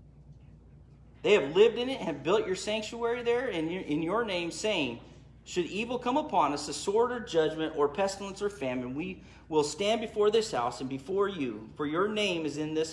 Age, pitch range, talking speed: 40-59, 125-195 Hz, 205 wpm